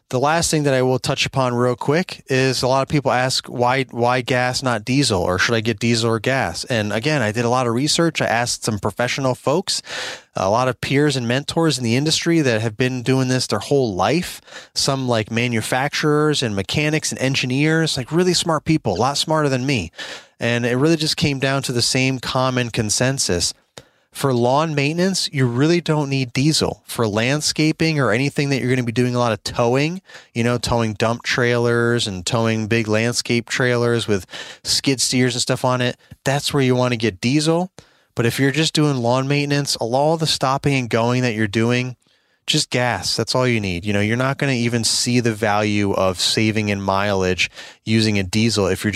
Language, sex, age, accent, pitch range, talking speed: English, male, 30-49, American, 110-135 Hz, 210 wpm